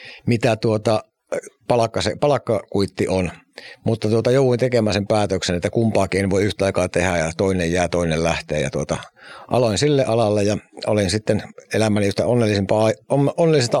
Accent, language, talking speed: native, Finnish, 145 wpm